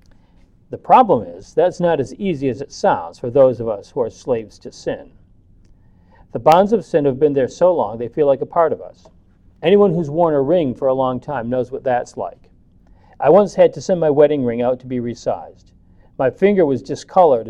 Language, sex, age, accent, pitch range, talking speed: English, male, 50-69, American, 120-180 Hz, 220 wpm